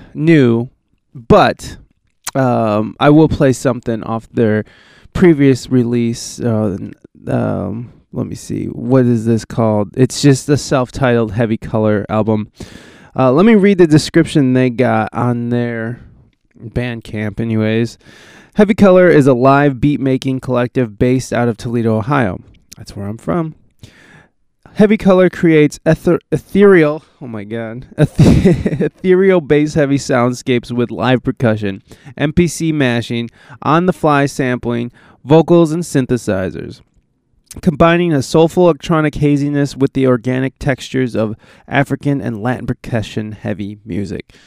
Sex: male